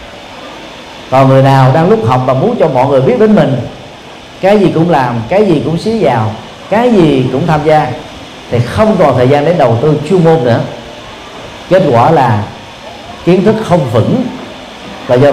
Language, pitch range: Vietnamese, 125-160 Hz